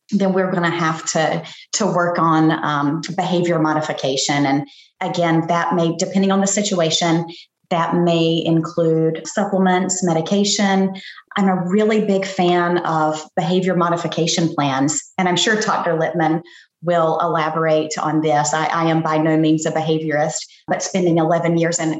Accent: American